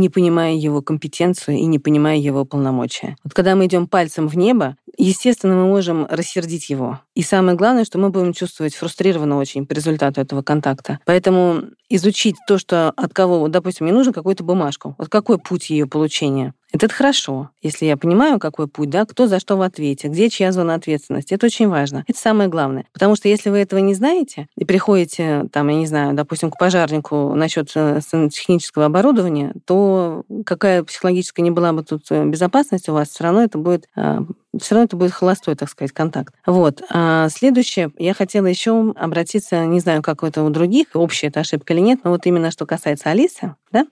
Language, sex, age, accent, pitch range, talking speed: Russian, female, 40-59, native, 155-190 Hz, 185 wpm